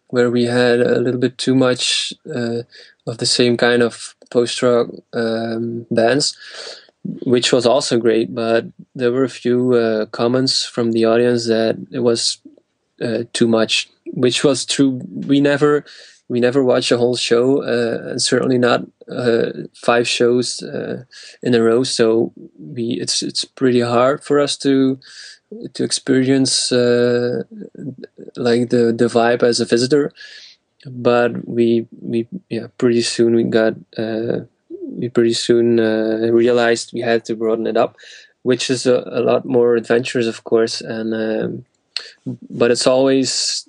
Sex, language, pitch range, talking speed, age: male, English, 115-130 Hz, 155 wpm, 20-39